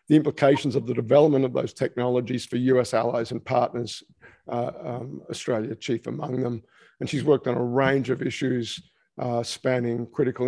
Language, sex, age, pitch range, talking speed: English, male, 50-69, 120-140 Hz, 170 wpm